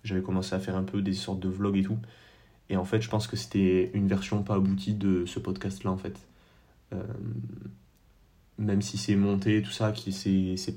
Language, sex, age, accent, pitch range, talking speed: French, male, 20-39, French, 95-105 Hz, 205 wpm